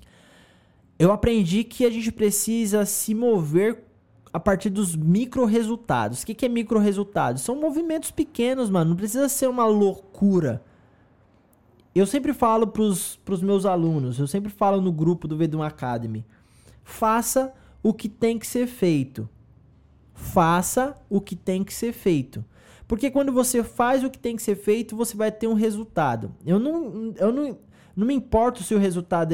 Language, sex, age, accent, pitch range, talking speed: Portuguese, male, 20-39, Brazilian, 155-245 Hz, 165 wpm